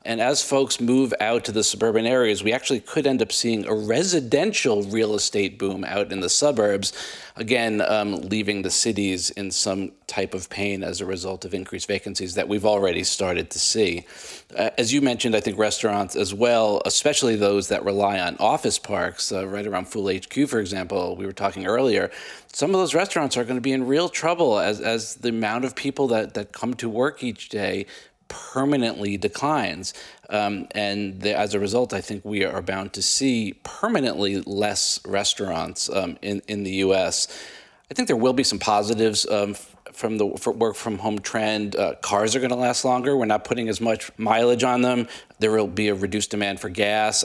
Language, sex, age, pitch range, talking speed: English, male, 40-59, 100-125 Hz, 195 wpm